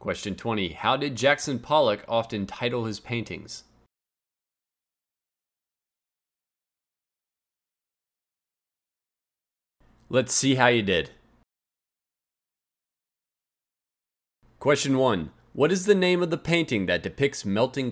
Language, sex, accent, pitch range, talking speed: English, male, American, 100-135 Hz, 90 wpm